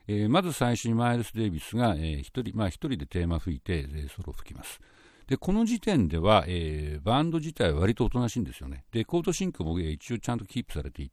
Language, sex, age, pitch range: Japanese, male, 60-79, 85-130 Hz